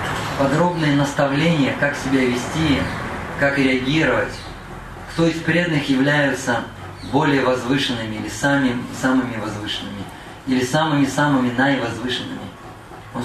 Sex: male